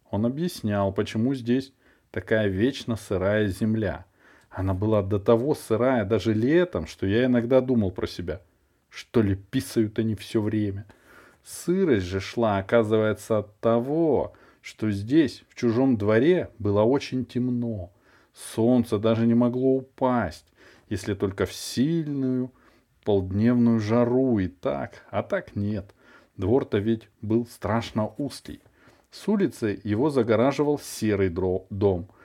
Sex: male